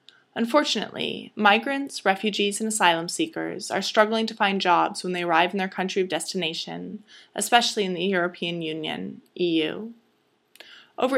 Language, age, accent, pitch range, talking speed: English, 20-39, American, 180-225 Hz, 140 wpm